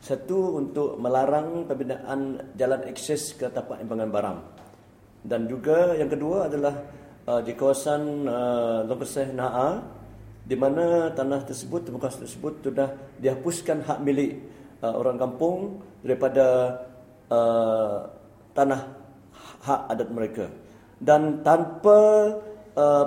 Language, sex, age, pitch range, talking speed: English, male, 50-69, 125-150 Hz, 110 wpm